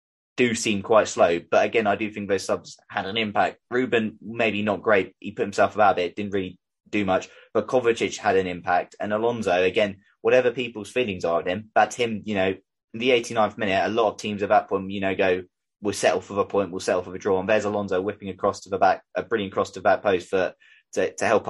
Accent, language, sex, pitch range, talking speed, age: British, English, male, 90-105 Hz, 245 wpm, 20-39